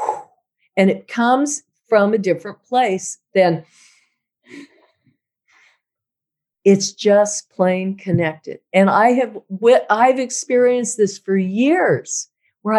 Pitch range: 185-235 Hz